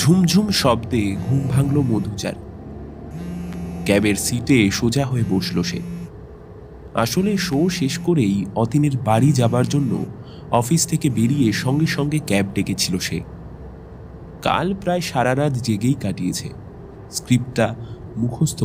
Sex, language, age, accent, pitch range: male, Bengali, 30-49, native, 95-135 Hz